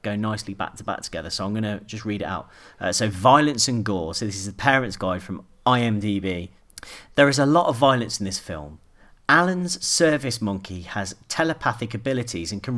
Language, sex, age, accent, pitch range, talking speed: English, male, 40-59, British, 100-135 Hz, 200 wpm